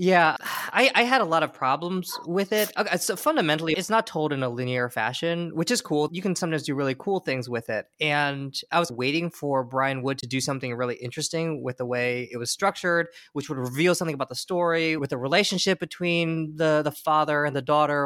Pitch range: 135-175 Hz